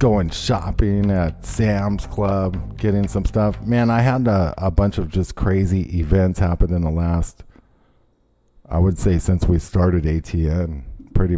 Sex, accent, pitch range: male, American, 85-105 Hz